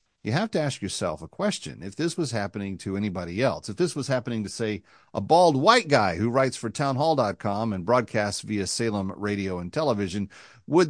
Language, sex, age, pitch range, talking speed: English, male, 40-59, 100-140 Hz, 200 wpm